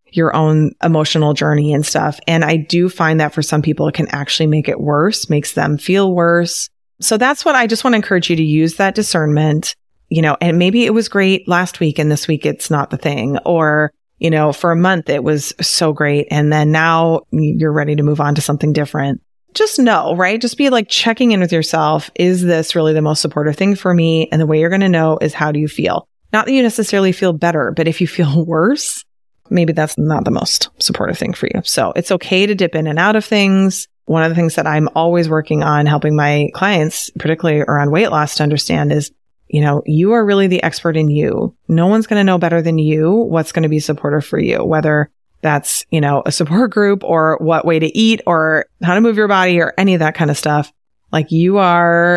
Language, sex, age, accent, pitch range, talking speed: English, female, 30-49, American, 150-180 Hz, 235 wpm